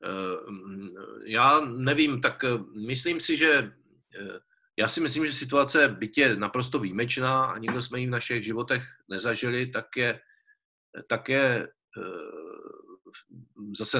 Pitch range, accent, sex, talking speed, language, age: 110-150 Hz, native, male, 120 wpm, Czech, 40-59